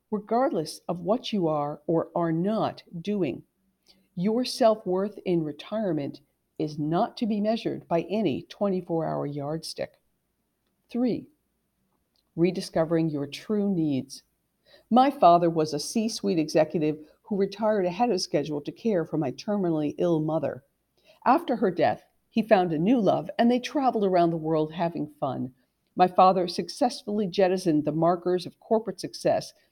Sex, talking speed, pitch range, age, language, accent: female, 140 wpm, 160-215 Hz, 50-69, English, American